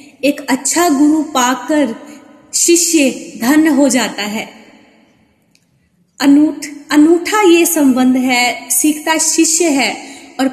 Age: 20-39